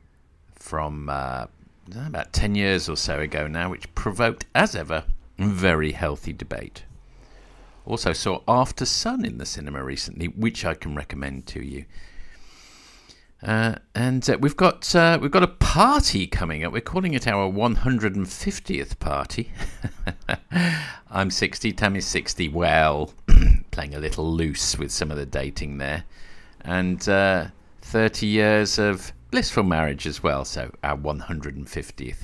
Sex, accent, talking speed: male, British, 145 wpm